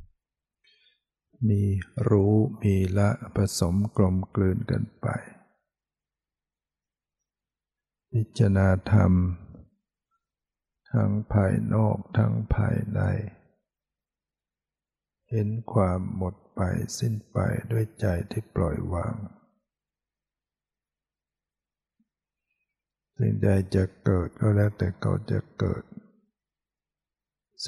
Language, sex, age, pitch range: Thai, male, 60-79, 95-110 Hz